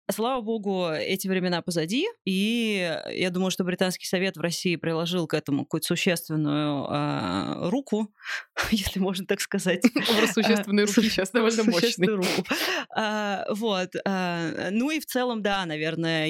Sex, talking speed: female, 125 wpm